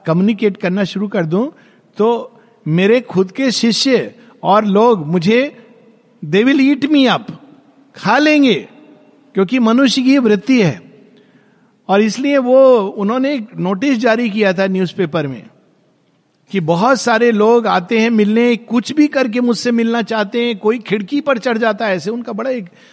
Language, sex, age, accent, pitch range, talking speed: Hindi, male, 50-69, native, 175-245 Hz, 155 wpm